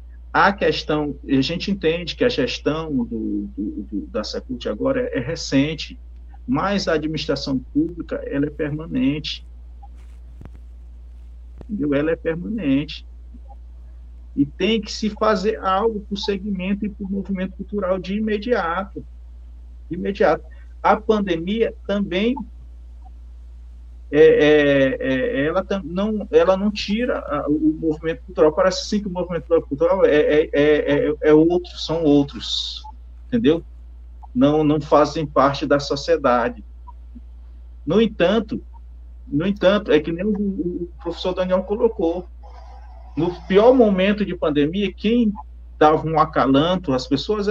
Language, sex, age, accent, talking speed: Portuguese, male, 50-69, Brazilian, 125 wpm